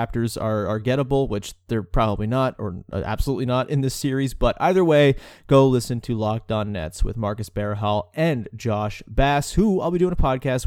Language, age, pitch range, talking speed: English, 30-49, 115-180 Hz, 190 wpm